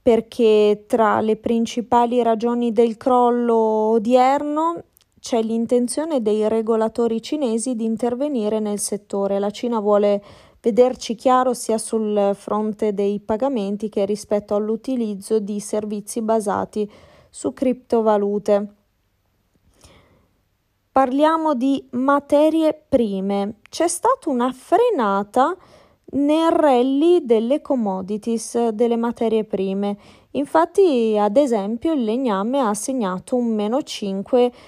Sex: female